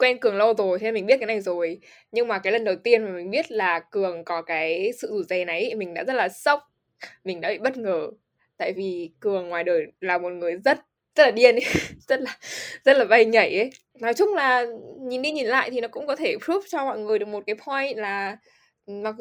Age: 10-29